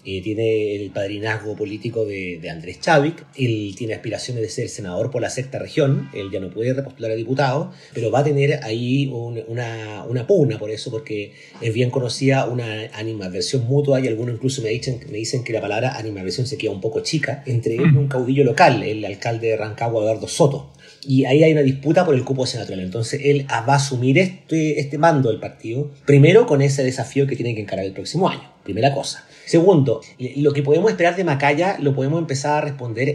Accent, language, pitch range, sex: Argentinian, Spanish, 110-145 Hz, male